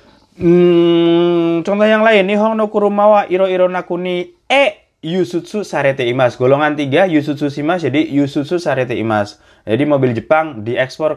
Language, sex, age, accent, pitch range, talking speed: Indonesian, male, 20-39, native, 110-170 Hz, 135 wpm